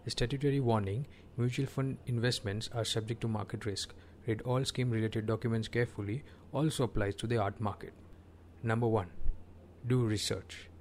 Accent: Indian